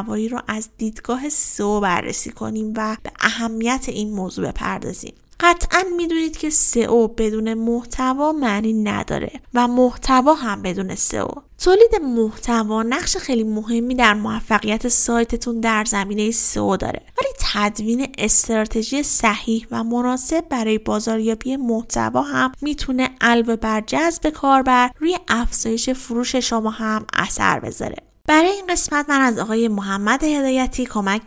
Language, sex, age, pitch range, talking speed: Persian, female, 10-29, 210-260 Hz, 130 wpm